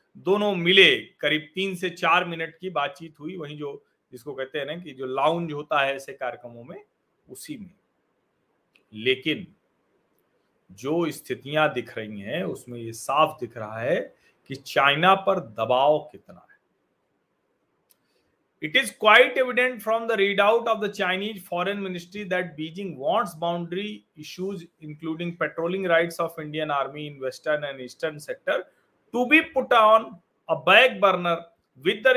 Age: 40-59